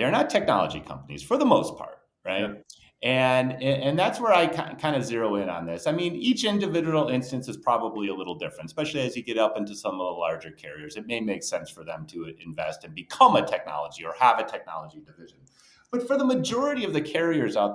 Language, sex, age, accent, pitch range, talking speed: English, male, 30-49, American, 105-175 Hz, 225 wpm